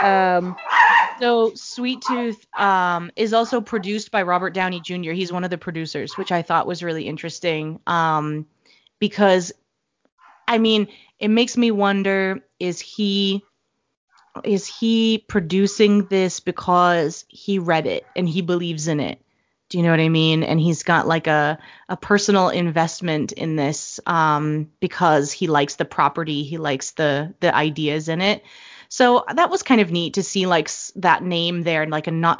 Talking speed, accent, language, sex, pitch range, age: 170 wpm, American, English, female, 165-205 Hz, 20-39